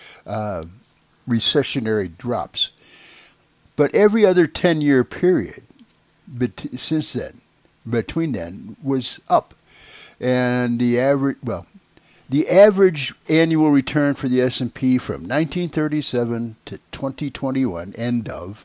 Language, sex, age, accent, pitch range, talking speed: English, male, 60-79, American, 120-155 Hz, 95 wpm